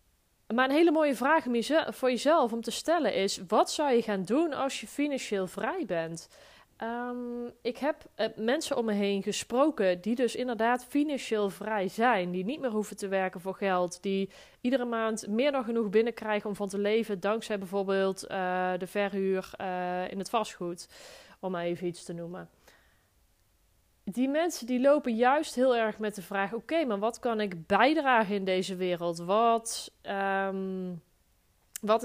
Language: Dutch